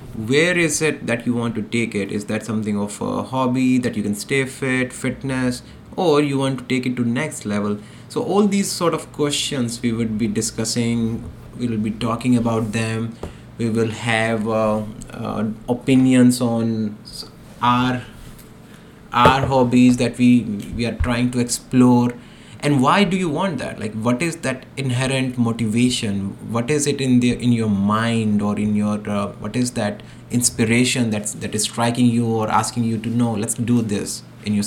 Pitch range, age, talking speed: 110-130 Hz, 20-39, 185 wpm